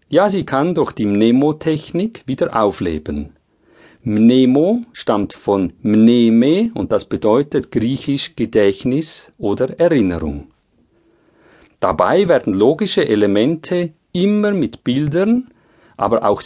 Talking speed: 100 wpm